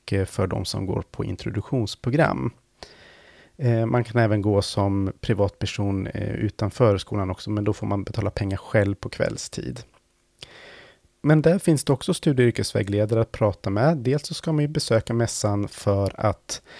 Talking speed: 155 wpm